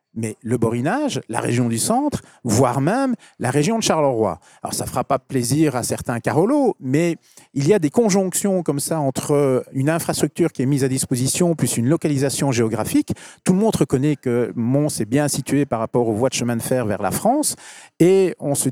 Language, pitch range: French, 130-185 Hz